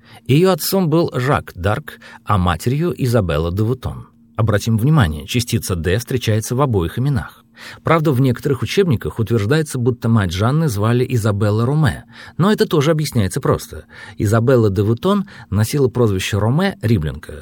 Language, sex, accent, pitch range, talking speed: Russian, male, native, 100-140 Hz, 140 wpm